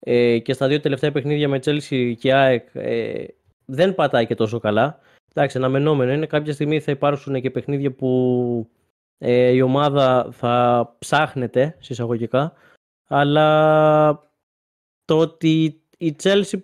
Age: 20-39